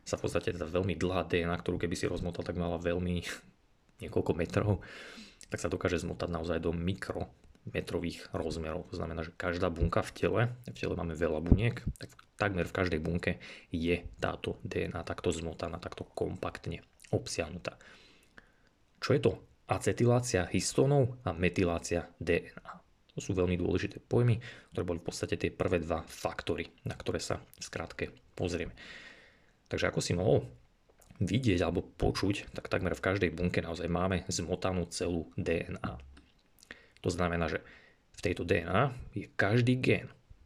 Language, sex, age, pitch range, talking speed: Slovak, male, 20-39, 85-100 Hz, 150 wpm